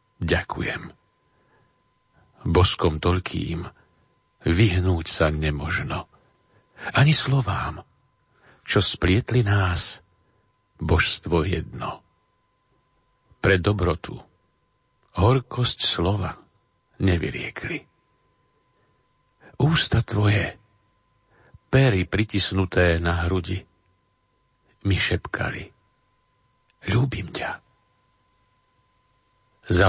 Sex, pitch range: male, 95-125 Hz